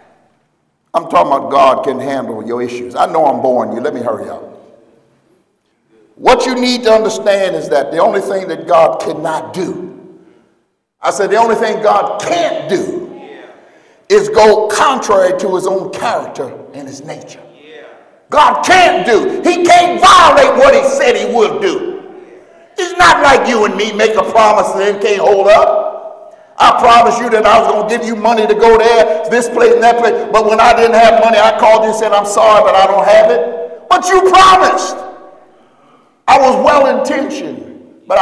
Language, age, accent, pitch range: English, 60-79, American, 210-320 Hz